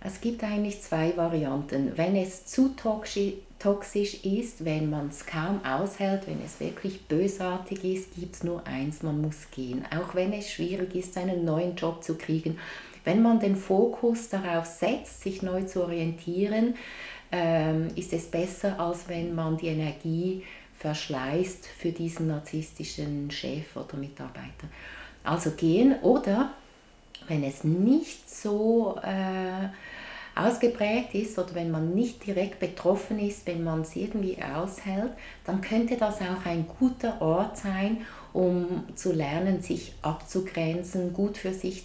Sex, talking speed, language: female, 145 wpm, German